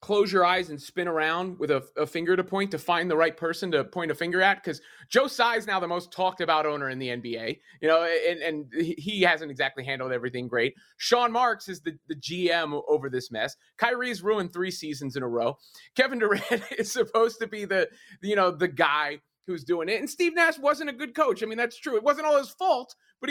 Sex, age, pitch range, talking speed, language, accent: male, 30-49, 150-225 Hz, 235 wpm, English, American